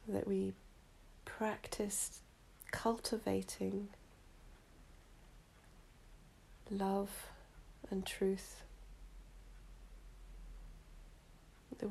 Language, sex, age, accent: English, female, 40-59, British